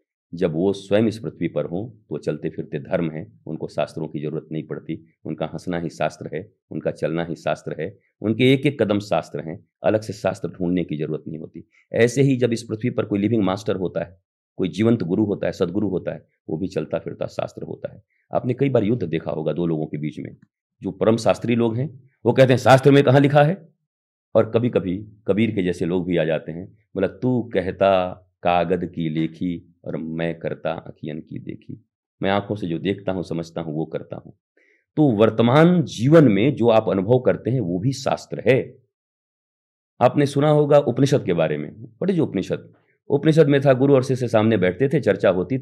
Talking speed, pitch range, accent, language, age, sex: 210 wpm, 85-130 Hz, native, Hindi, 50-69, male